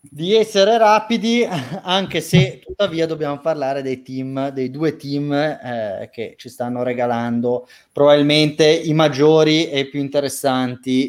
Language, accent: Italian, native